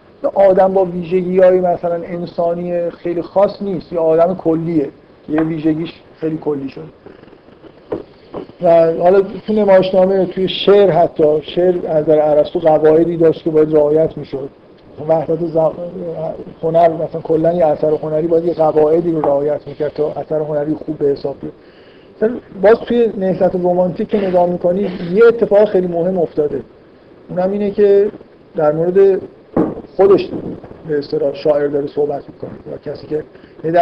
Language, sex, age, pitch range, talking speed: Persian, male, 50-69, 155-185 Hz, 140 wpm